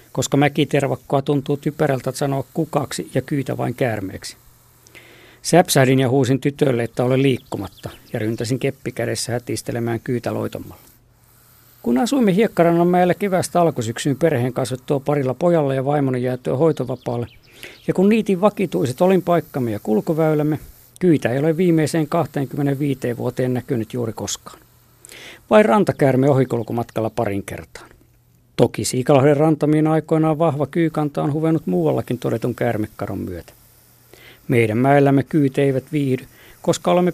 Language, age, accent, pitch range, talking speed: Finnish, 50-69, native, 120-155 Hz, 125 wpm